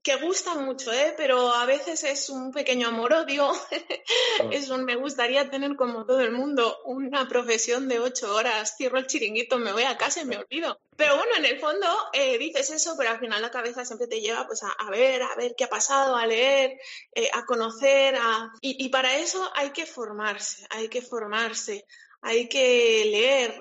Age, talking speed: 20-39, 200 wpm